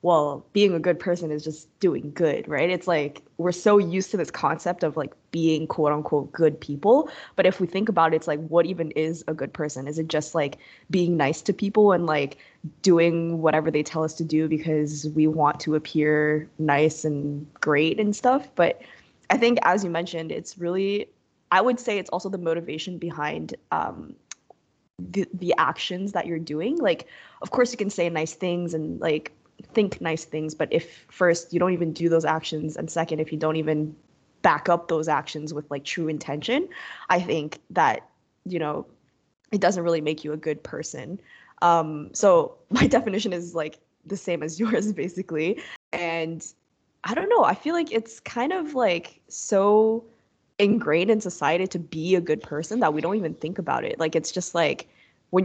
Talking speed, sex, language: 195 wpm, female, English